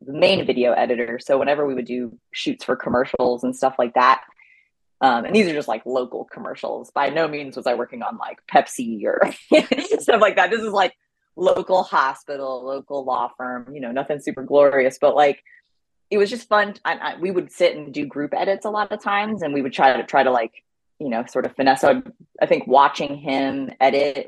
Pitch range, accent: 135-160 Hz, American